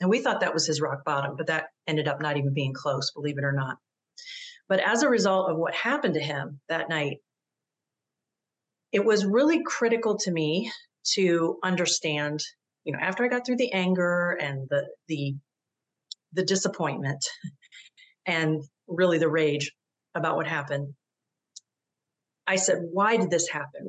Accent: American